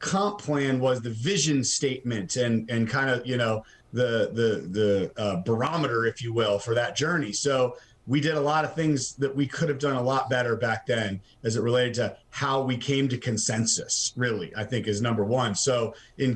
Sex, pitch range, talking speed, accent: male, 120-145 Hz, 210 wpm, American